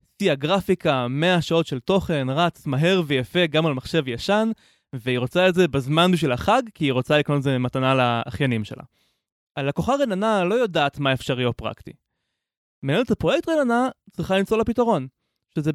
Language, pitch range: Hebrew, 140-200 Hz